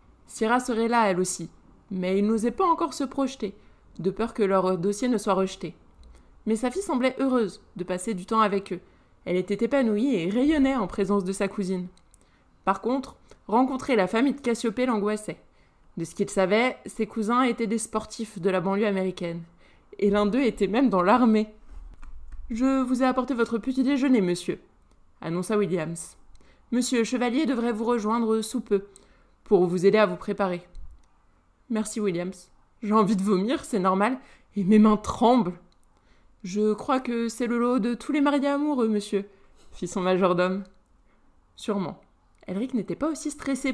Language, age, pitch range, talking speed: French, 20-39, 185-235 Hz, 170 wpm